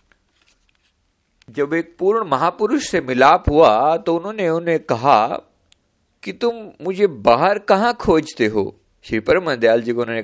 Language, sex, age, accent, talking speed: Hindi, male, 50-69, native, 135 wpm